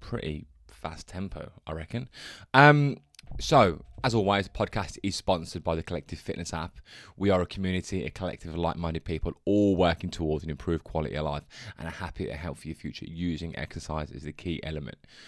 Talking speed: 190 wpm